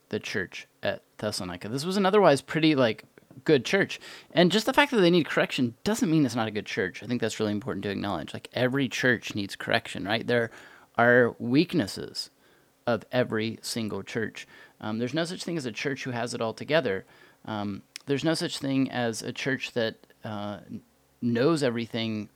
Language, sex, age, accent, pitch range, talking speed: English, male, 30-49, American, 105-140 Hz, 195 wpm